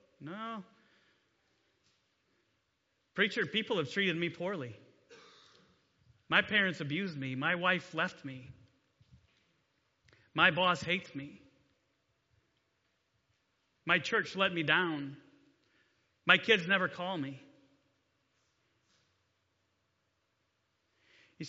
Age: 30-49